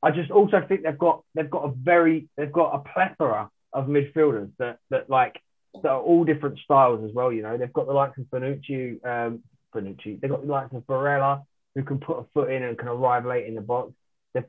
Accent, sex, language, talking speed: British, male, English, 230 wpm